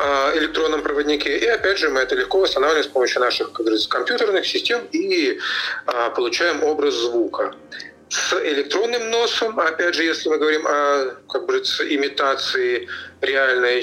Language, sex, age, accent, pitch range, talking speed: Russian, male, 40-59, native, 330-435 Hz, 135 wpm